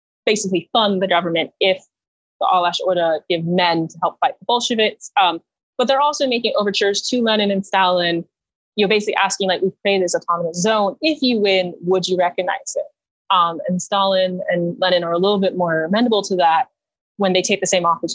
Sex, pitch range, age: female, 175-215 Hz, 20-39